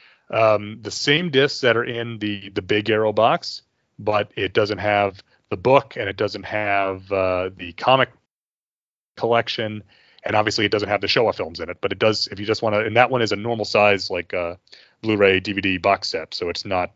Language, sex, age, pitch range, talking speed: English, male, 30-49, 100-125 Hz, 210 wpm